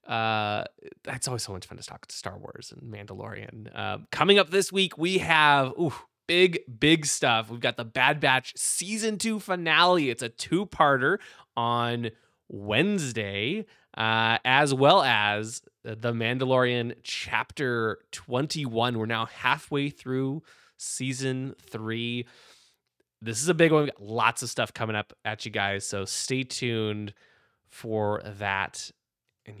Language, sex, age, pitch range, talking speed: English, male, 20-39, 110-145 Hz, 150 wpm